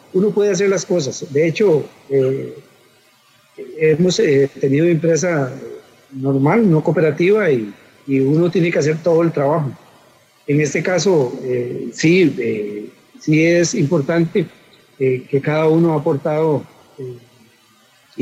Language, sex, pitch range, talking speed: English, male, 135-170 Hz, 130 wpm